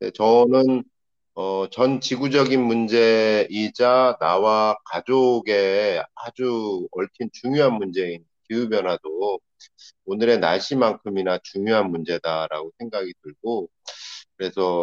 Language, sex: Korean, male